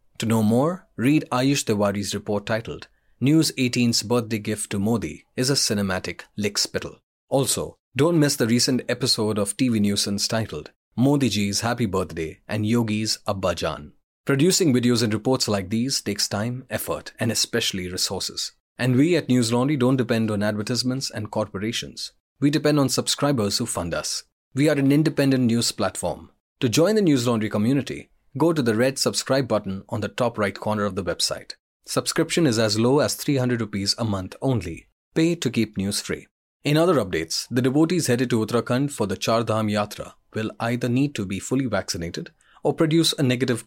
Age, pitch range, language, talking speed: 30-49, 105-135 Hz, English, 175 wpm